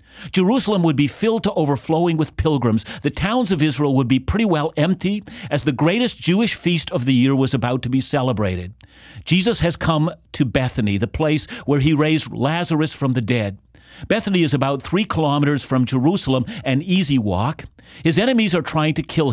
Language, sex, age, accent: English, male, 50-69, American